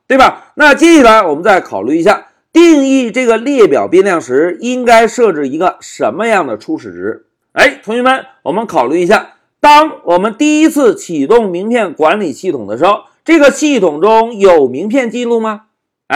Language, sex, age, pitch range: Chinese, male, 50-69, 215-310 Hz